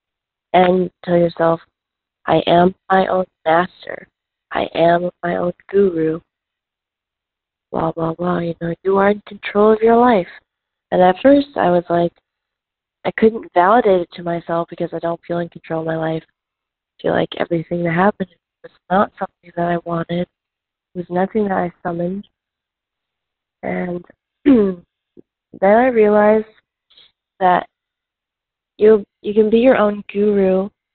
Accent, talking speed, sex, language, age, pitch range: American, 145 wpm, female, English, 20-39, 175-205 Hz